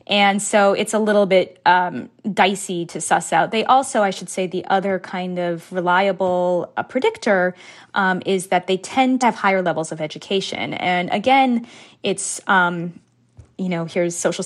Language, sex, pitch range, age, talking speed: English, female, 175-215 Hz, 20-39, 175 wpm